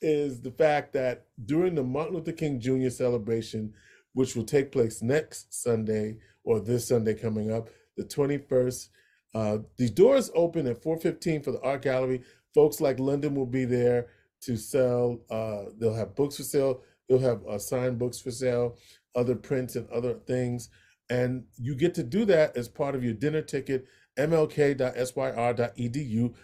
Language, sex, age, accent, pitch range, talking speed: English, male, 40-59, American, 115-145 Hz, 165 wpm